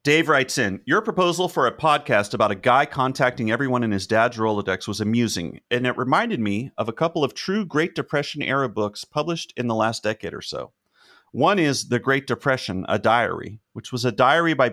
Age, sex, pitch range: 30-49, male, 110-150 Hz